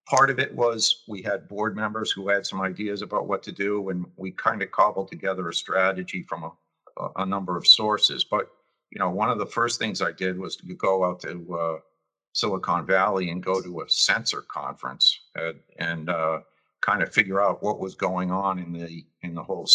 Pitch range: 85-100 Hz